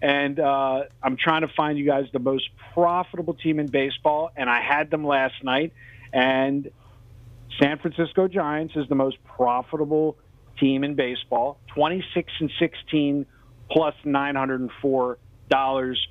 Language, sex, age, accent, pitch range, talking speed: English, male, 40-59, American, 125-165 Hz, 130 wpm